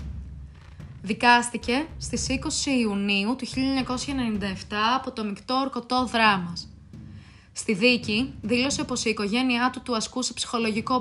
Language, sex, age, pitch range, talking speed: Greek, female, 20-39, 195-240 Hz, 115 wpm